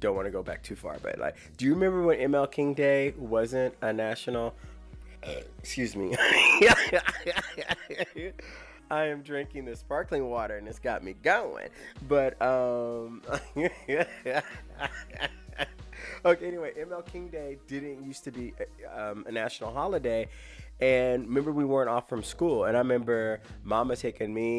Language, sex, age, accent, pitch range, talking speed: English, male, 20-39, American, 100-130 Hz, 150 wpm